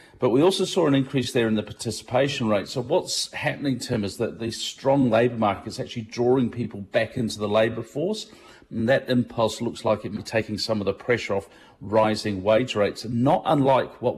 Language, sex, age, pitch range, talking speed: English, male, 40-59, 100-120 Hz, 210 wpm